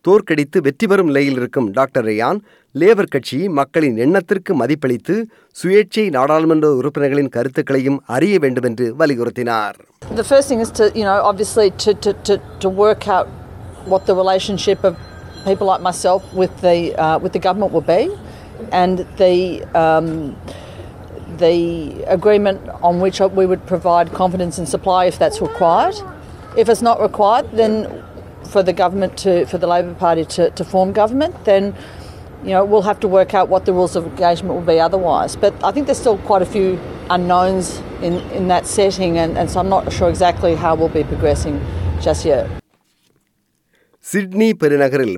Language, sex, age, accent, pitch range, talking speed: Tamil, female, 40-59, Australian, 145-195 Hz, 100 wpm